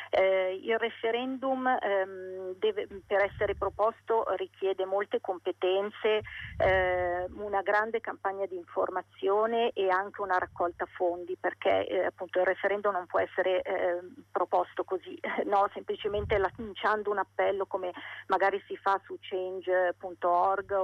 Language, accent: Italian, native